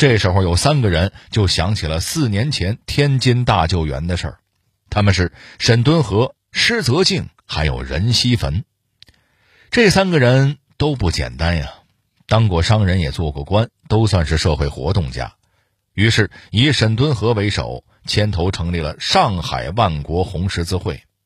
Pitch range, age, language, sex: 85-120 Hz, 50-69, Chinese, male